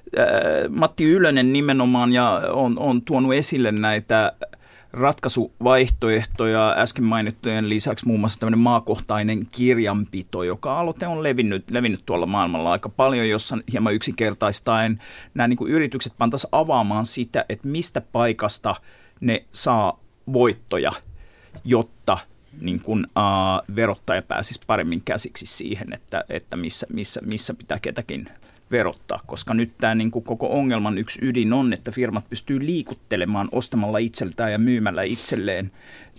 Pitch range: 105-125 Hz